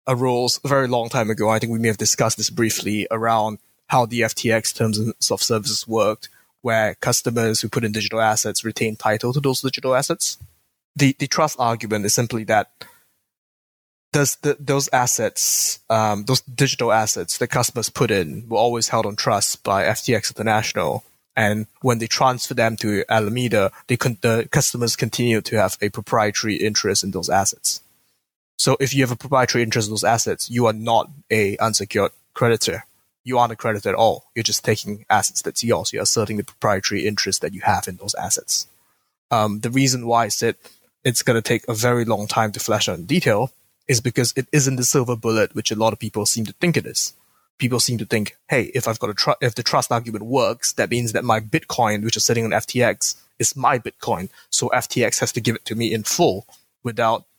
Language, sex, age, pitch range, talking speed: English, male, 20-39, 110-125 Hz, 205 wpm